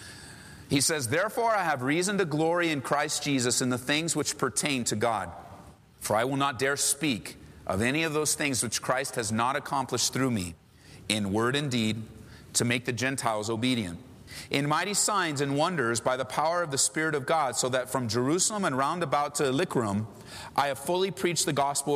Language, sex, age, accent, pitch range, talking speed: English, male, 40-59, American, 125-185 Hz, 200 wpm